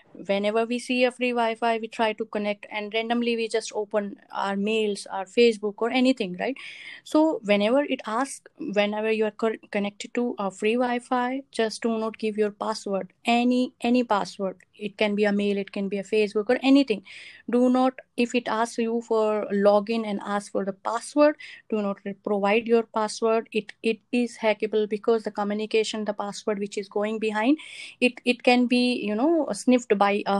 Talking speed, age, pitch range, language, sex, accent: 190 wpm, 20-39, 205-240 Hz, English, female, Indian